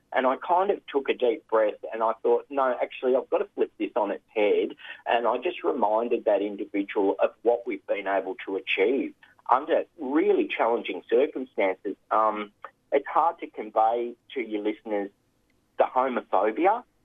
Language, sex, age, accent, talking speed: English, male, 40-59, Australian, 170 wpm